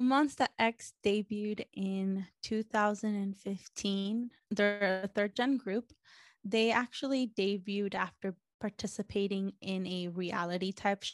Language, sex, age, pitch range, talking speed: English, female, 20-39, 190-240 Hz, 90 wpm